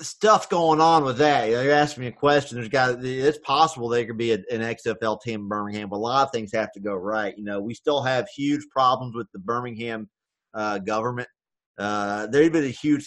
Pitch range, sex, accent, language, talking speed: 115-150 Hz, male, American, English, 245 wpm